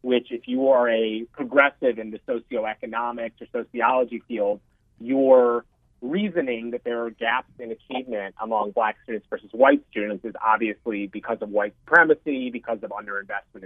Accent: American